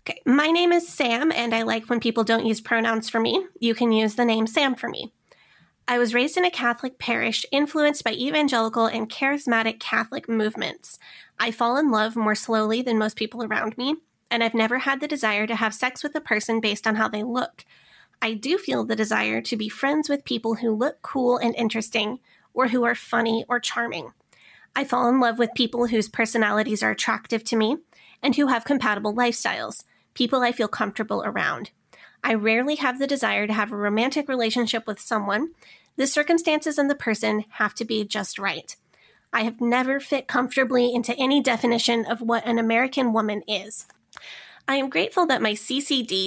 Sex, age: female, 20-39